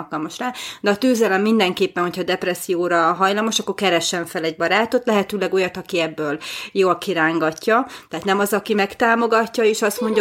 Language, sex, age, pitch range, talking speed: Hungarian, female, 30-49, 175-215 Hz, 165 wpm